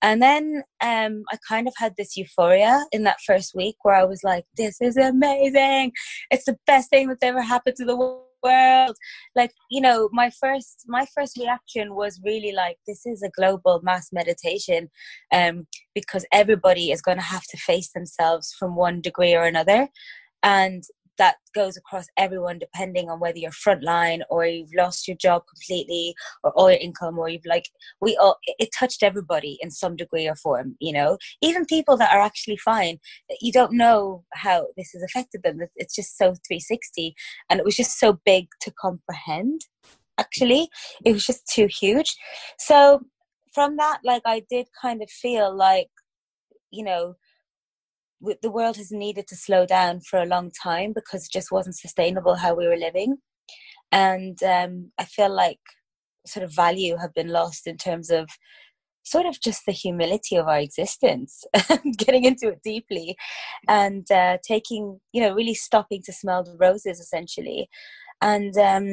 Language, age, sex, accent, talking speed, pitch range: English, 20-39, female, British, 175 wpm, 180-245 Hz